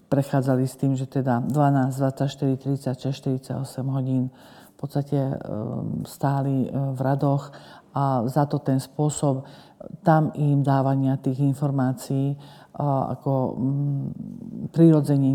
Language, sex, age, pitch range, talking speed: Slovak, female, 50-69, 130-140 Hz, 105 wpm